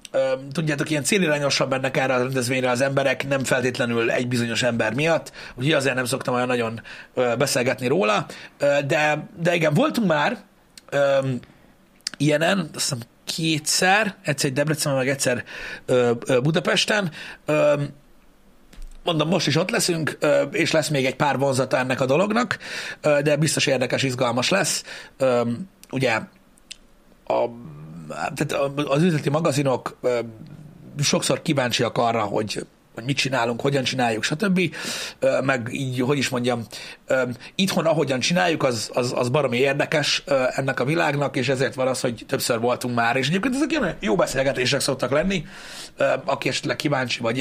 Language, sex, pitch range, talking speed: Hungarian, male, 125-155 Hz, 135 wpm